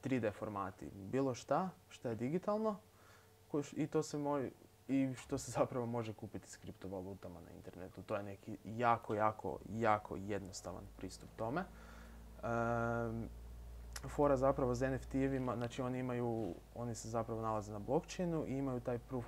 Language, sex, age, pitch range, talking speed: Croatian, male, 20-39, 100-125 Hz, 155 wpm